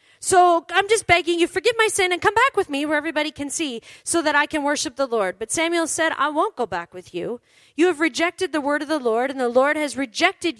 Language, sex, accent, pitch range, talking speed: English, female, American, 215-335 Hz, 260 wpm